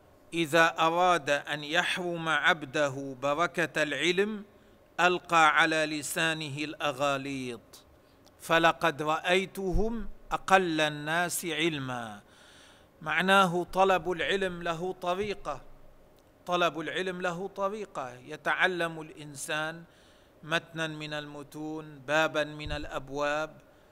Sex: male